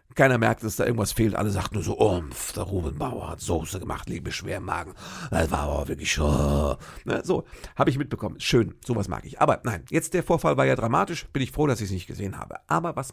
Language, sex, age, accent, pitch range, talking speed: German, male, 50-69, German, 90-135 Hz, 240 wpm